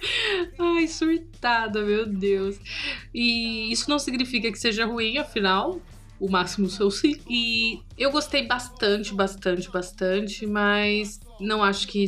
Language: Portuguese